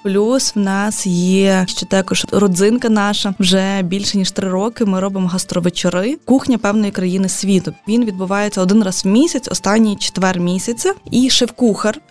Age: 20-39